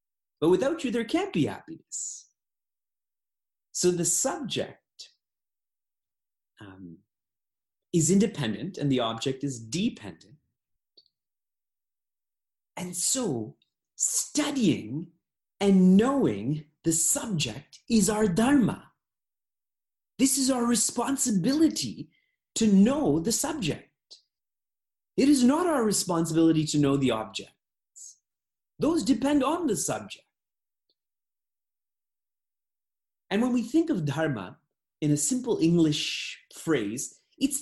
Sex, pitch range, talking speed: male, 135-215 Hz, 100 wpm